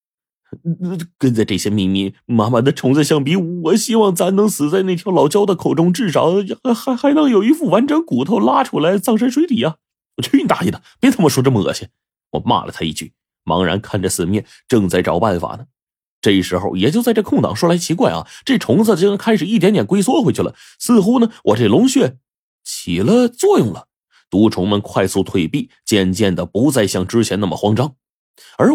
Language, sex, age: Chinese, male, 30-49